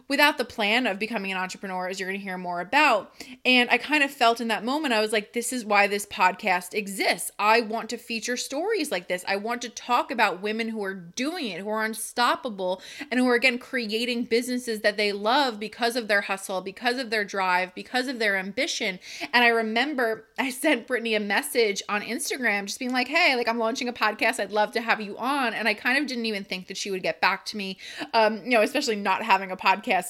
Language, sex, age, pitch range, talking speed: English, female, 20-39, 205-250 Hz, 235 wpm